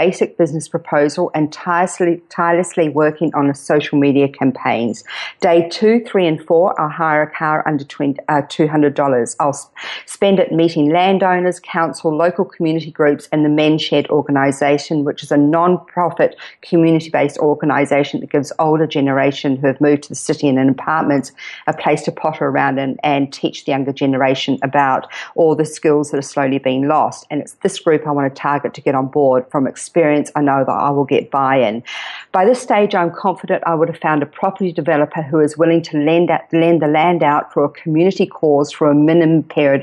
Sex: female